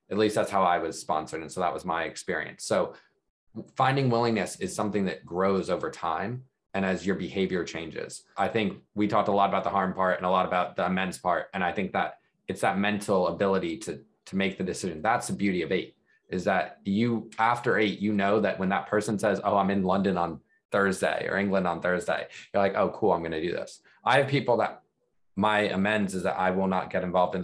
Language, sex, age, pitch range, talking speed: English, male, 20-39, 95-105 Hz, 235 wpm